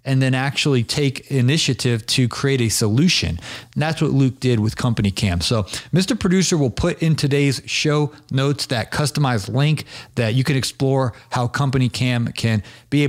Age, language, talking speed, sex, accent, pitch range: 40-59, English, 180 wpm, male, American, 120-145 Hz